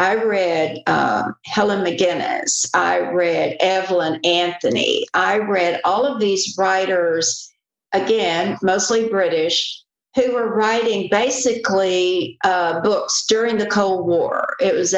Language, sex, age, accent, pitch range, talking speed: English, female, 60-79, American, 170-220 Hz, 120 wpm